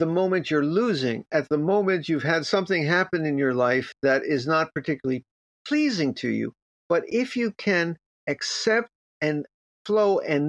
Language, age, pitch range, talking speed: English, 50-69, 145-200 Hz, 165 wpm